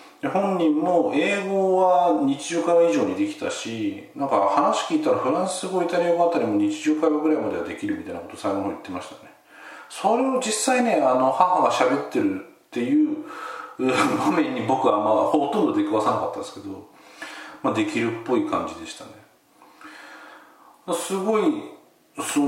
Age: 40-59